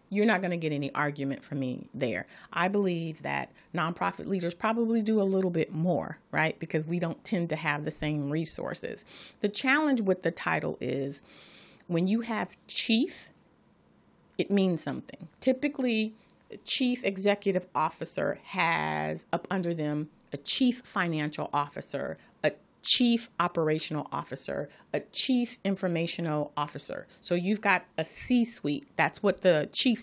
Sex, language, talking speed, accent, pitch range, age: female, English, 145 wpm, American, 155-205 Hz, 40-59